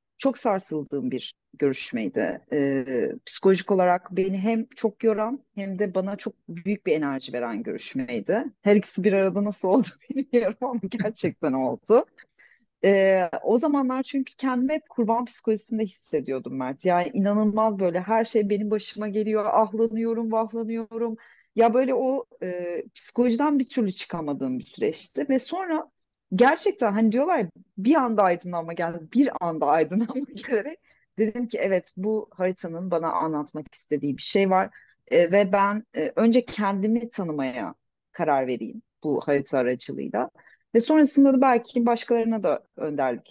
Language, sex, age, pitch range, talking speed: Turkish, female, 40-59, 180-240 Hz, 145 wpm